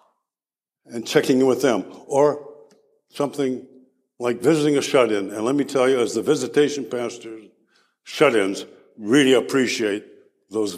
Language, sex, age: English, male, 60-79